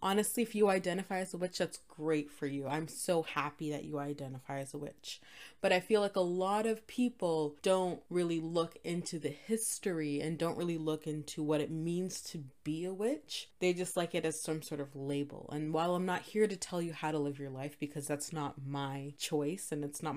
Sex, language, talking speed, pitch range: female, English, 225 wpm, 150-190 Hz